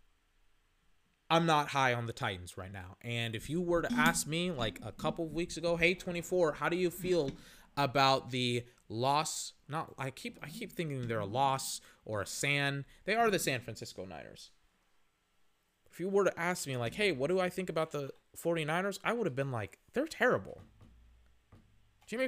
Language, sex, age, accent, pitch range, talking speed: English, male, 20-39, American, 120-180 Hz, 190 wpm